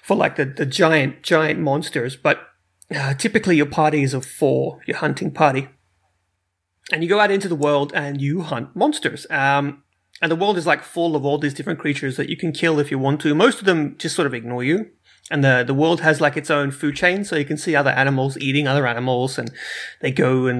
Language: English